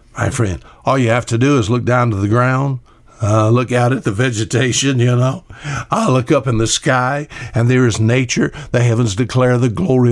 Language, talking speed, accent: English, 215 wpm, American